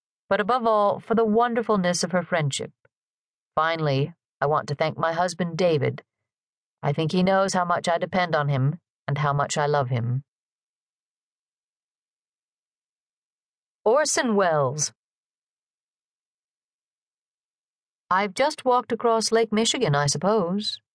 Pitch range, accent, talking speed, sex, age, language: 145-195 Hz, American, 125 wpm, female, 50-69, English